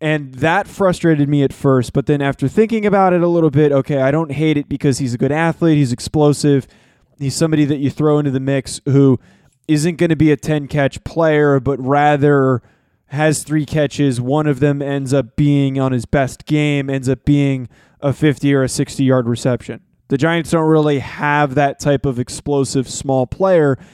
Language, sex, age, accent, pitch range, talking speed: English, male, 20-39, American, 130-150 Hz, 195 wpm